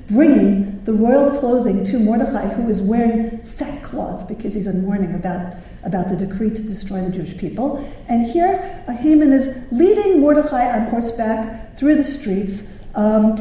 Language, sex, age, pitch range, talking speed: English, female, 50-69, 190-245 Hz, 155 wpm